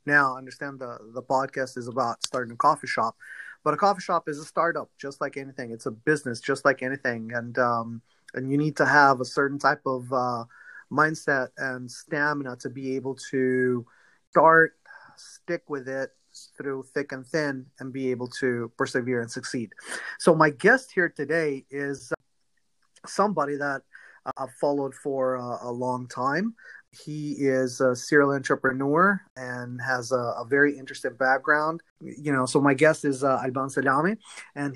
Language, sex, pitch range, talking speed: English, male, 130-155 Hz, 170 wpm